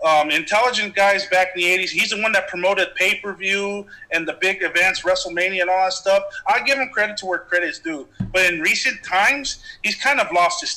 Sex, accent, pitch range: male, American, 175-225 Hz